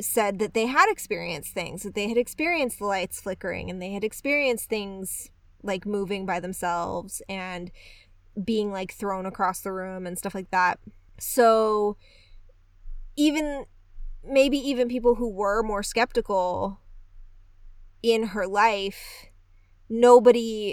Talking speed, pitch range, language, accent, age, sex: 135 wpm, 170-235 Hz, English, American, 20-39, female